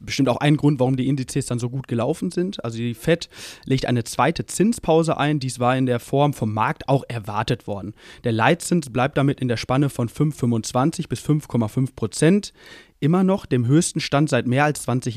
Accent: German